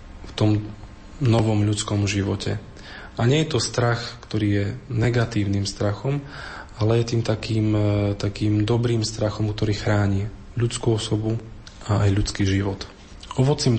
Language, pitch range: Slovak, 105-115 Hz